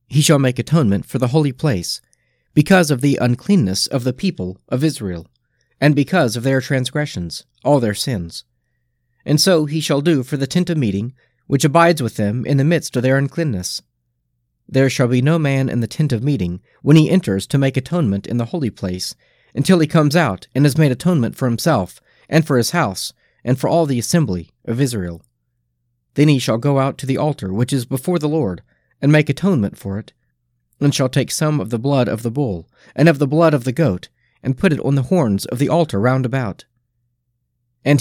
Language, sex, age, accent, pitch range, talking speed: English, male, 40-59, American, 115-150 Hz, 210 wpm